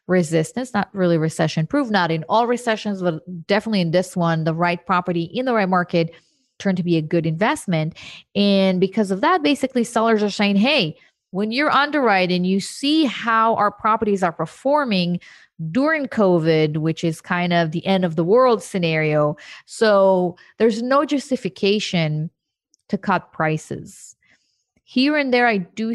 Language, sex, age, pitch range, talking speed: English, female, 30-49, 170-210 Hz, 160 wpm